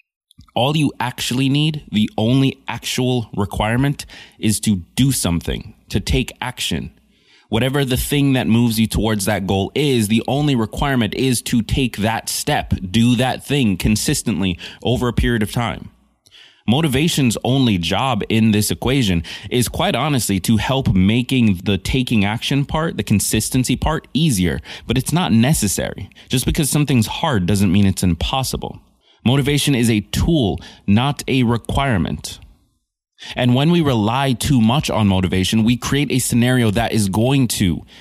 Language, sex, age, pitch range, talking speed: English, male, 20-39, 100-125 Hz, 155 wpm